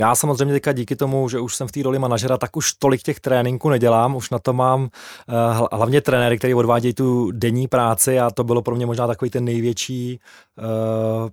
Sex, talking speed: male, 210 wpm